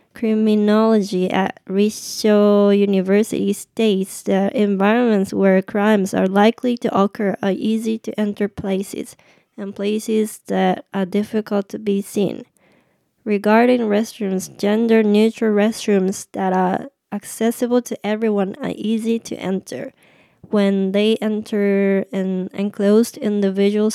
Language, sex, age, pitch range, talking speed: English, female, 20-39, 195-215 Hz, 115 wpm